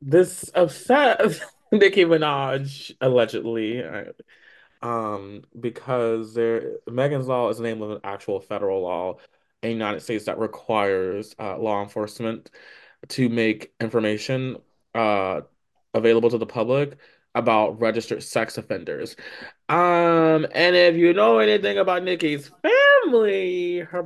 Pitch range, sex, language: 130-185 Hz, male, English